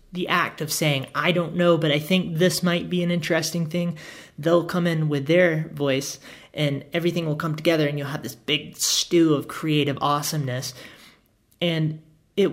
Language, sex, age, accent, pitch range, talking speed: English, male, 30-49, American, 135-170 Hz, 180 wpm